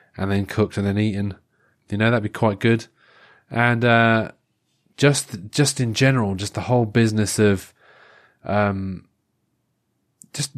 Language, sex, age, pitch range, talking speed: English, male, 20-39, 100-125 Hz, 140 wpm